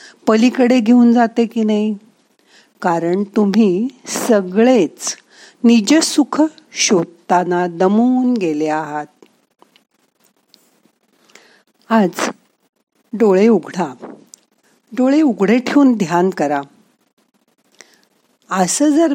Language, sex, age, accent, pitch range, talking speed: Marathi, female, 50-69, native, 175-250 Hz, 60 wpm